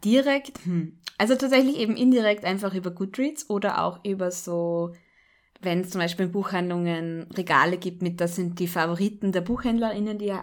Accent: German